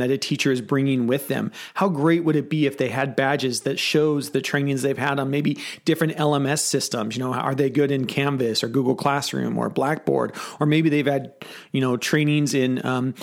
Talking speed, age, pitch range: 220 wpm, 40-59, 125-150 Hz